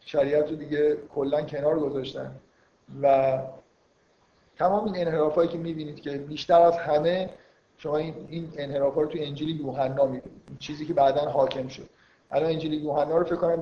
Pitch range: 135-160 Hz